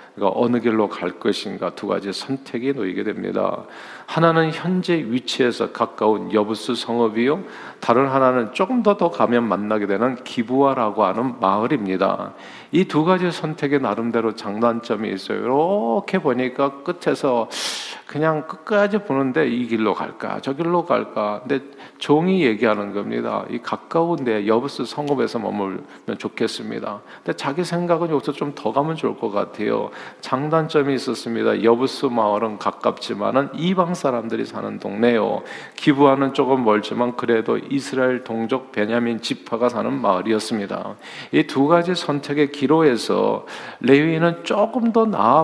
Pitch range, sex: 115-155 Hz, male